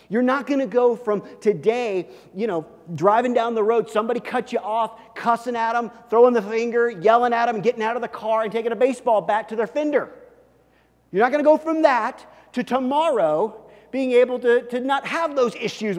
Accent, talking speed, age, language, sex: American, 210 wpm, 40-59, English, male